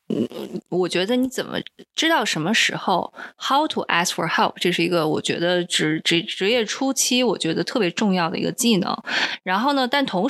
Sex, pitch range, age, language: female, 180-255 Hz, 20-39, Chinese